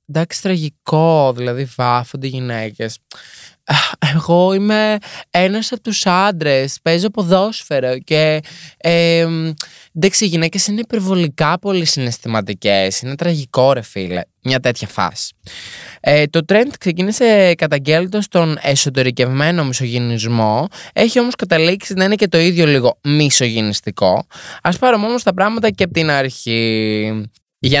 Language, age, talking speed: Greek, 20-39, 120 wpm